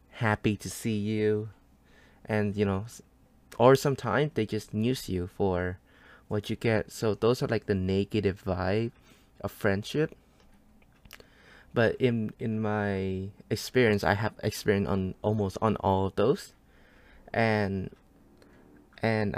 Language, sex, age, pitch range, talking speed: English, male, 20-39, 95-115 Hz, 130 wpm